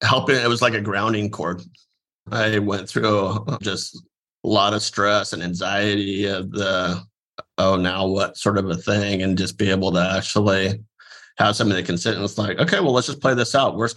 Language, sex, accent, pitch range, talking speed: English, male, American, 95-110 Hz, 205 wpm